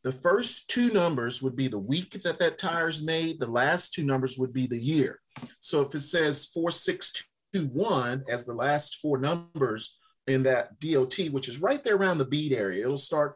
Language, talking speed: English, 195 wpm